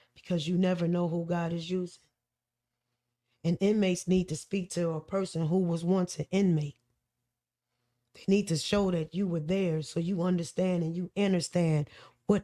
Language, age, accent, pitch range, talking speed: English, 20-39, American, 150-190 Hz, 175 wpm